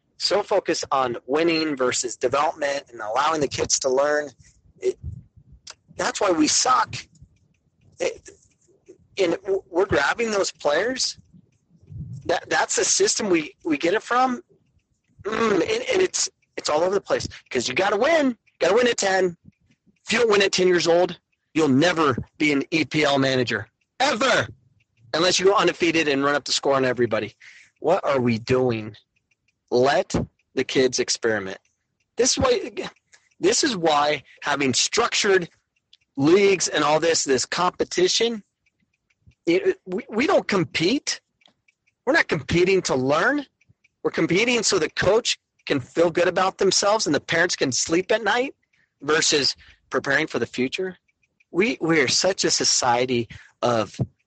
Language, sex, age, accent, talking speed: English, male, 40-59, American, 150 wpm